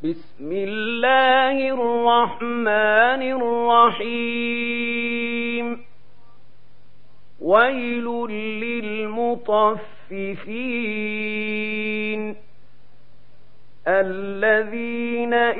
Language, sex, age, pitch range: Arabic, male, 50-69, 180-230 Hz